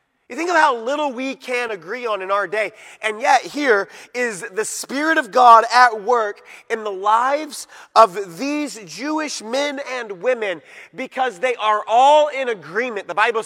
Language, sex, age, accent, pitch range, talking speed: English, male, 30-49, American, 215-290 Hz, 175 wpm